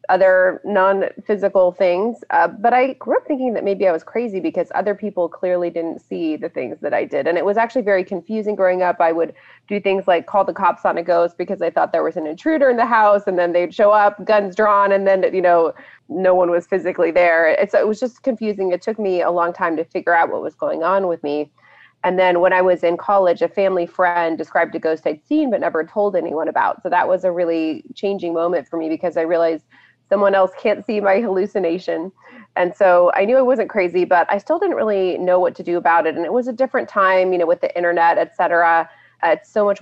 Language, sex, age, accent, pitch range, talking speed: English, female, 30-49, American, 170-205 Hz, 245 wpm